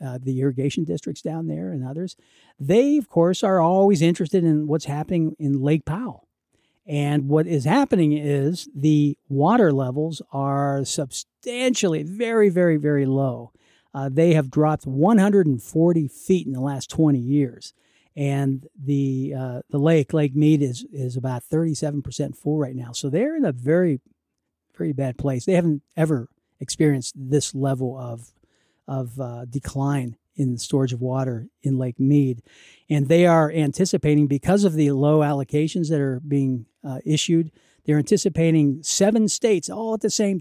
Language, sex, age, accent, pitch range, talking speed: English, male, 50-69, American, 135-160 Hz, 160 wpm